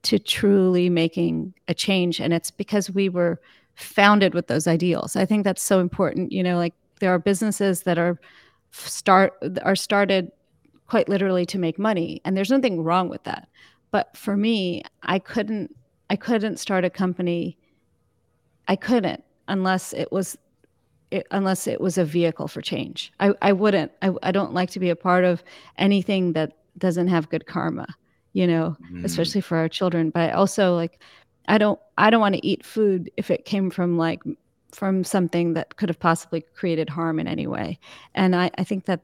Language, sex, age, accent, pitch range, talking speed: English, female, 40-59, American, 170-195 Hz, 185 wpm